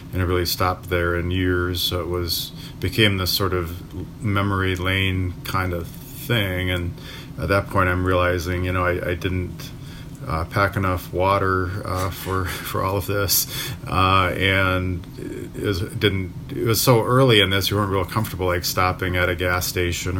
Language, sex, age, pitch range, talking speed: English, male, 40-59, 90-100 Hz, 185 wpm